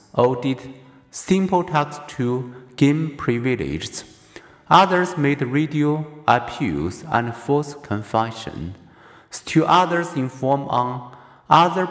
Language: Chinese